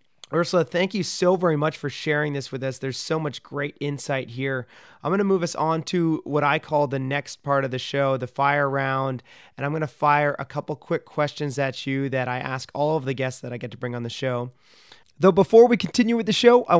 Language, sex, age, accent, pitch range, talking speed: English, male, 30-49, American, 150-200 Hz, 250 wpm